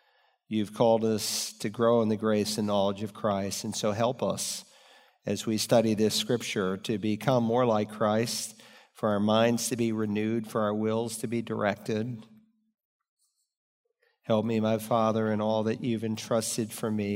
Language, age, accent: English, 50-69, American